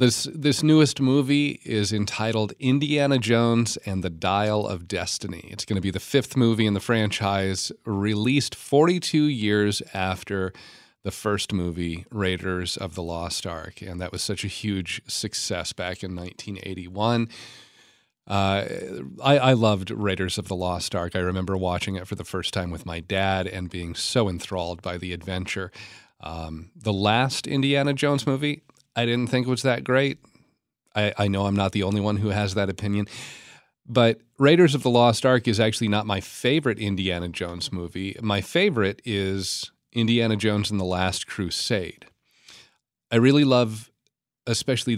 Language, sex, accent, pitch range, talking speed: English, male, American, 95-120 Hz, 165 wpm